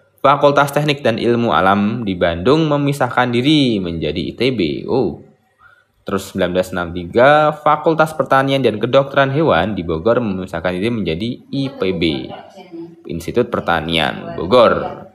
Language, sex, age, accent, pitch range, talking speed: Indonesian, male, 20-39, native, 90-135 Hz, 110 wpm